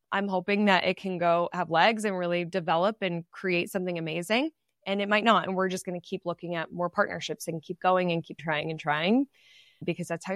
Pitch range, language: 170-210 Hz, English